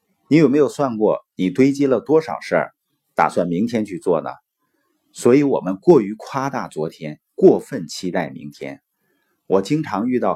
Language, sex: Chinese, male